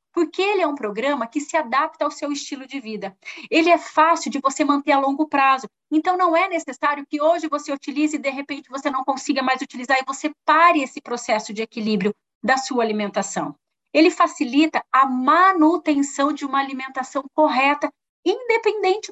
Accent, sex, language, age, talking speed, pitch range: Brazilian, female, Portuguese, 30-49, 180 wpm, 265-320 Hz